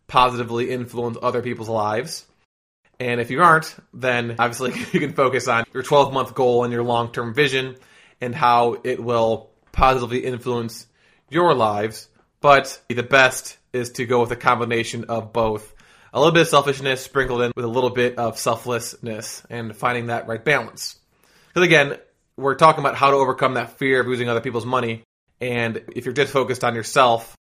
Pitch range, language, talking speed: 115-130 Hz, English, 175 wpm